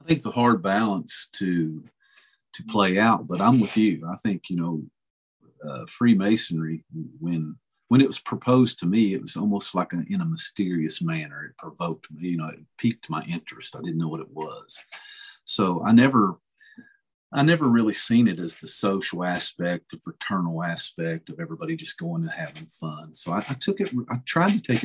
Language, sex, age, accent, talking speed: English, male, 50-69, American, 195 wpm